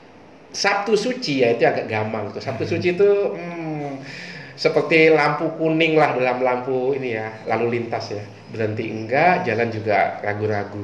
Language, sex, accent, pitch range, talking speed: Indonesian, male, native, 115-155 Hz, 145 wpm